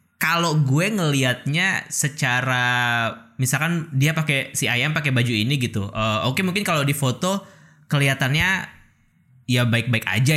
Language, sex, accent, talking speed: Indonesian, male, native, 140 wpm